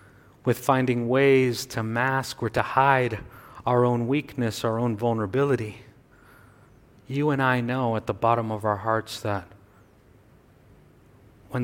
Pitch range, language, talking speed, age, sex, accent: 115-135 Hz, English, 135 wpm, 40-59, male, American